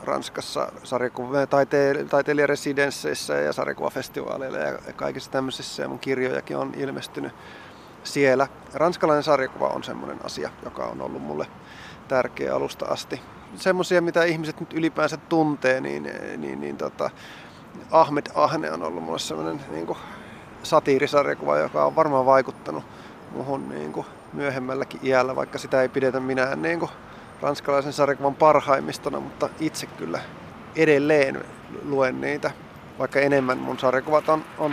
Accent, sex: native, male